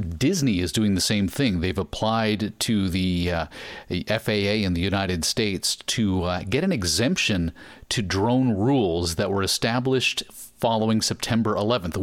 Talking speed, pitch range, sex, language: 155 wpm, 100-130 Hz, male, English